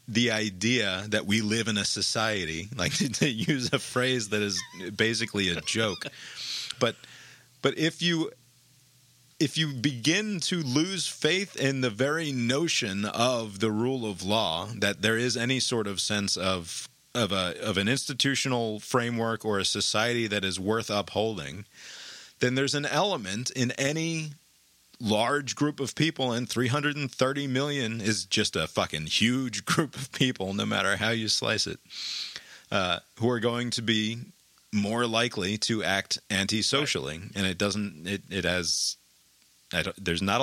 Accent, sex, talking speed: American, male, 160 wpm